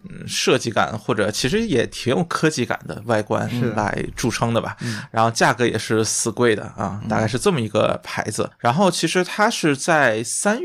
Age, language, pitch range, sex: 20-39, Chinese, 115-150 Hz, male